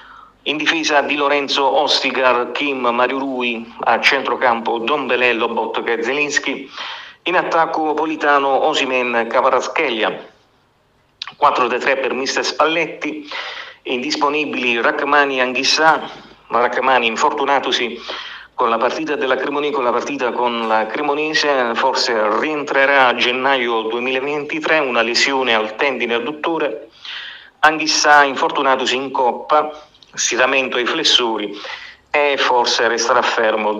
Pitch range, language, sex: 130-160 Hz, Italian, male